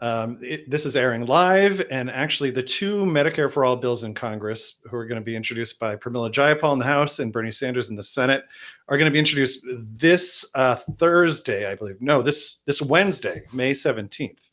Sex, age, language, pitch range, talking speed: male, 40-59, English, 125-155 Hz, 200 wpm